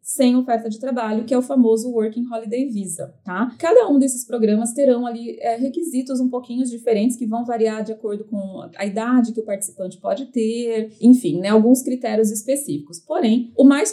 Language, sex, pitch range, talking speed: Portuguese, female, 210-255 Hz, 190 wpm